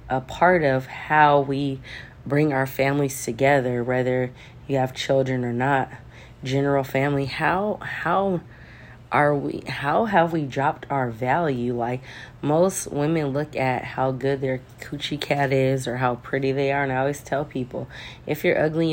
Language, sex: English, female